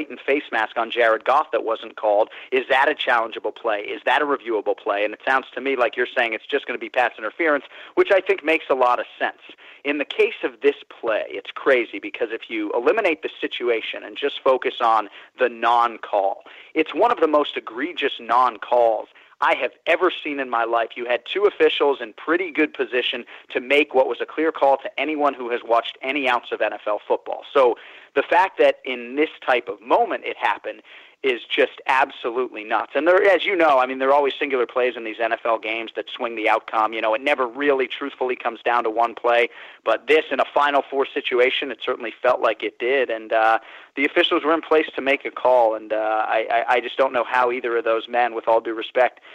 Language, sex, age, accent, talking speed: English, male, 40-59, American, 225 wpm